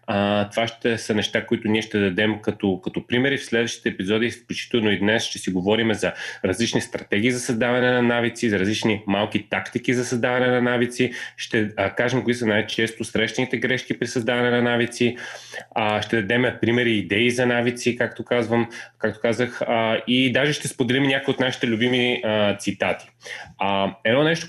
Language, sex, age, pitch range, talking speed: Bulgarian, male, 30-49, 100-125 Hz, 180 wpm